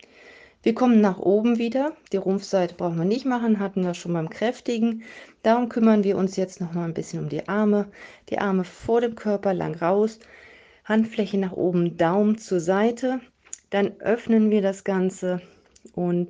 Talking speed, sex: 175 wpm, female